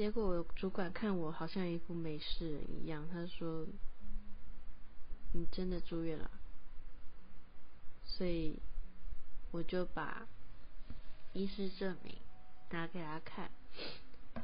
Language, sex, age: Chinese, female, 20-39